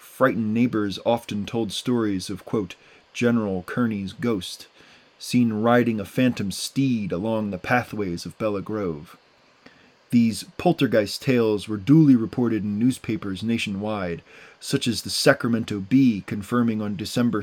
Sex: male